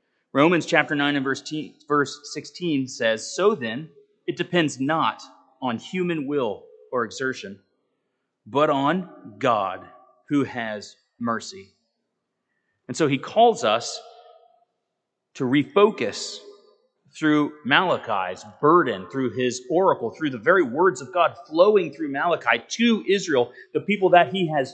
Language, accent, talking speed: English, American, 130 wpm